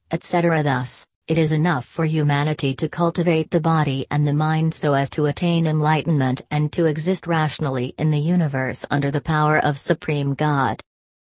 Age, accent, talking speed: 40-59, American, 170 wpm